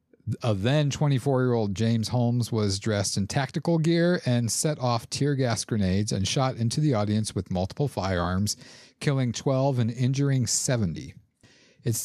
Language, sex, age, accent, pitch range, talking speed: English, male, 50-69, American, 105-135 Hz, 150 wpm